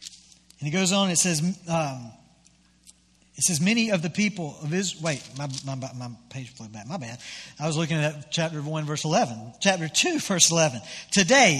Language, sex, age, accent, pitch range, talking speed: English, male, 50-69, American, 160-215 Hz, 195 wpm